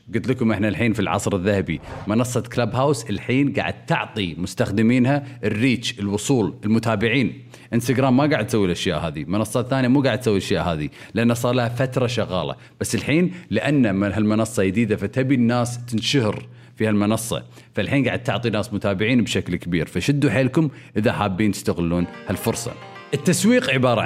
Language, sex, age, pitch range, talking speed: Arabic, male, 40-59, 105-130 Hz, 150 wpm